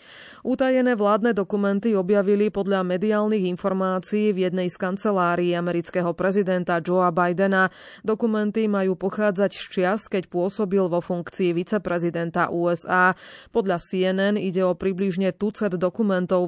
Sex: female